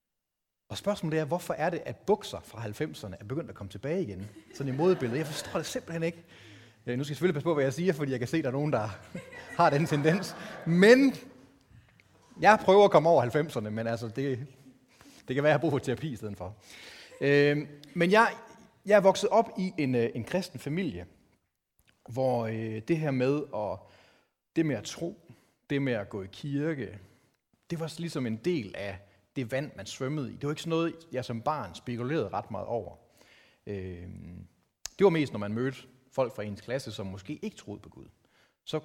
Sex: male